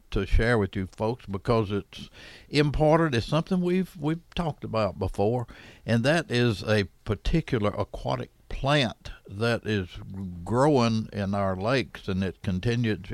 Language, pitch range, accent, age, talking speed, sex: English, 100-130 Hz, American, 60-79, 140 wpm, male